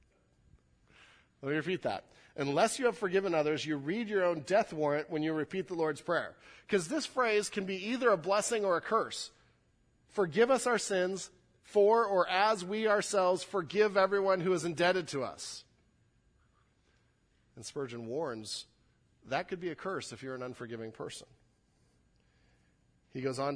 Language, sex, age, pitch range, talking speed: English, male, 40-59, 105-155 Hz, 165 wpm